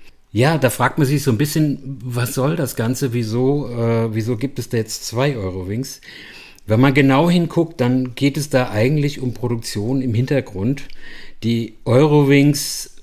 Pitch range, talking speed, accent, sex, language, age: 110-140 Hz, 160 wpm, German, male, German, 50-69